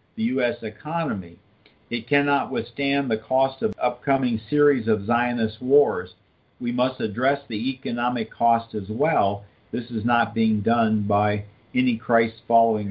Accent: American